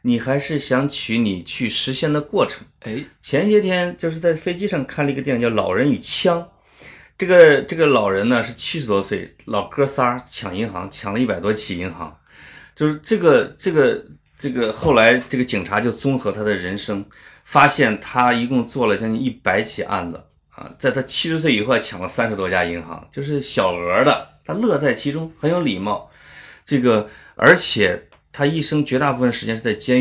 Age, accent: 30-49, native